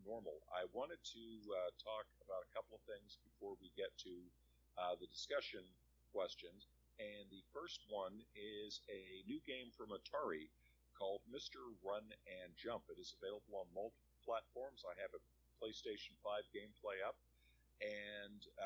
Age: 50-69